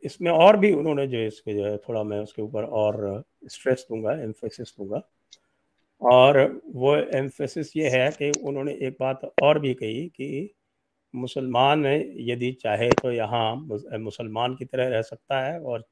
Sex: male